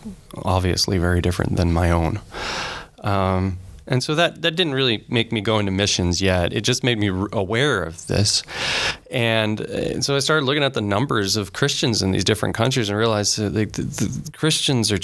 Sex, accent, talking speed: male, American, 195 wpm